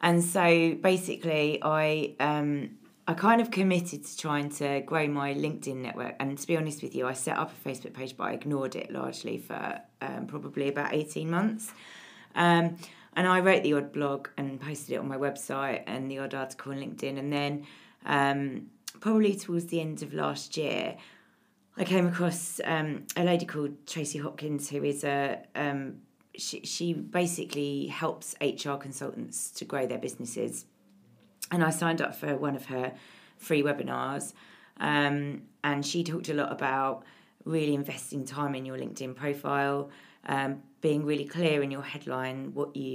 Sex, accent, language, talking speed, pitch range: female, British, English, 175 wpm, 140-165 Hz